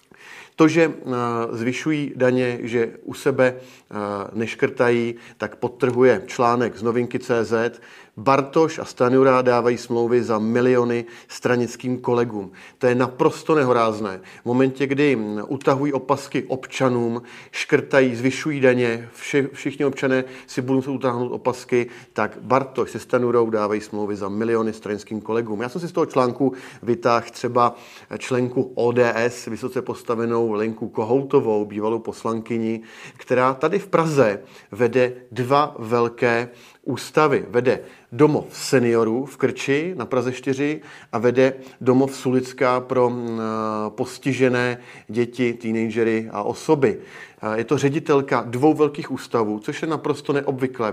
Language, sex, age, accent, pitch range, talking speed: Czech, male, 40-59, native, 115-130 Hz, 125 wpm